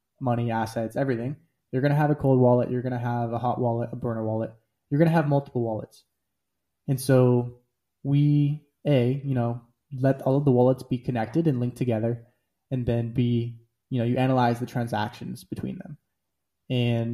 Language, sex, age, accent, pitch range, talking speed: English, male, 20-39, American, 115-135 Hz, 180 wpm